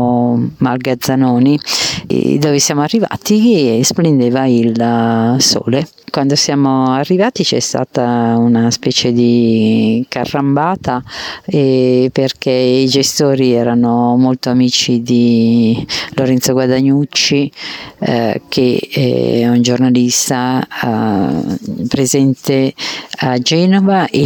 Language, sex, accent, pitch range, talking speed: Italian, female, native, 120-140 Hz, 90 wpm